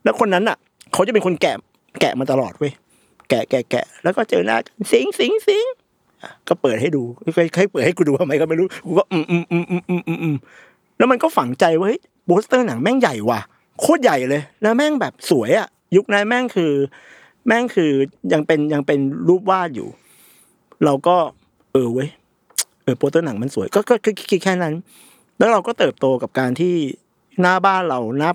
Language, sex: Thai, male